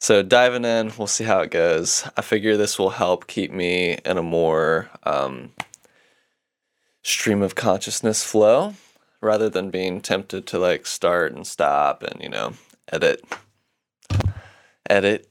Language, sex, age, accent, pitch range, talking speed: English, male, 20-39, American, 95-115 Hz, 145 wpm